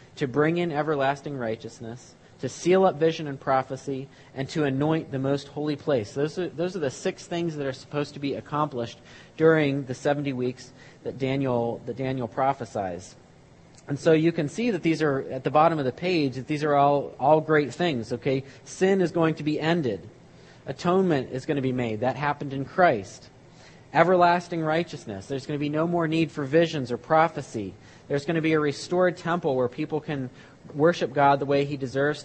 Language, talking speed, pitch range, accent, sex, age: English, 200 wpm, 130-160 Hz, American, male, 40-59